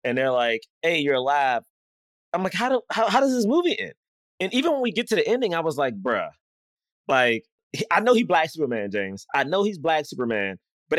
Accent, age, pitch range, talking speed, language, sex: American, 20-39, 125-205 Hz, 225 wpm, English, male